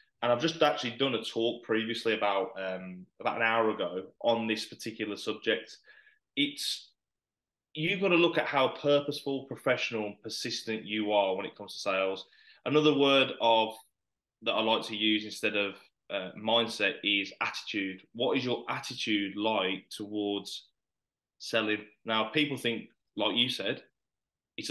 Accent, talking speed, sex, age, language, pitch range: British, 155 wpm, male, 20-39, English, 110-150 Hz